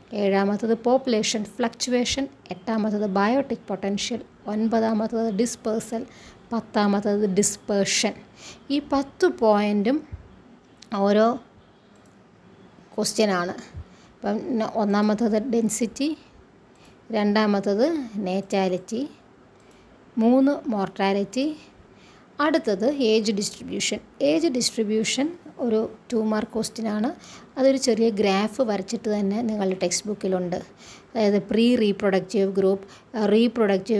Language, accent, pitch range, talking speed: Malayalam, native, 200-235 Hz, 80 wpm